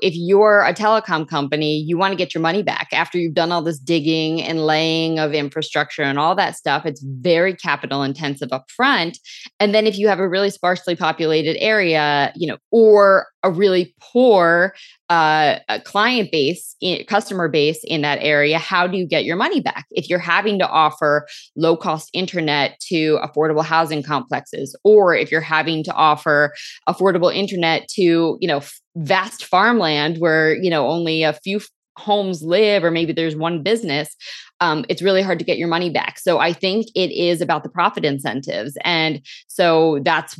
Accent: American